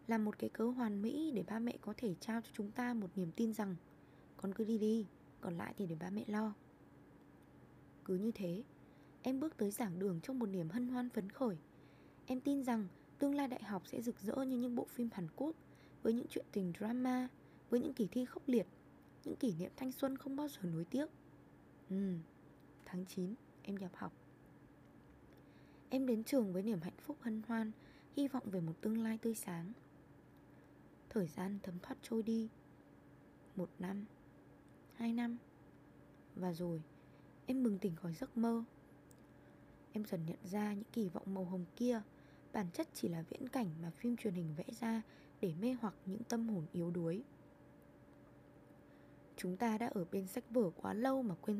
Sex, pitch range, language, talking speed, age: female, 180-240 Hz, Vietnamese, 190 wpm, 20-39